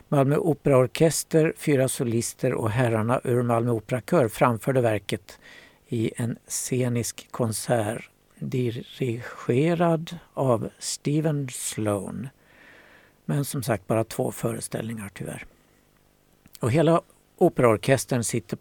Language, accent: Swedish, native